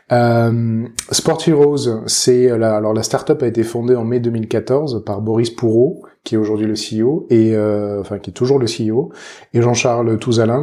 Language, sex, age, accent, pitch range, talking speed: French, male, 20-39, French, 110-130 Hz, 185 wpm